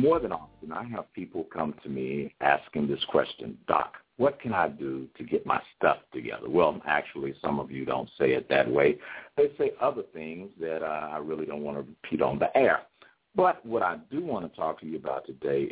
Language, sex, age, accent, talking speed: English, male, 60-79, American, 220 wpm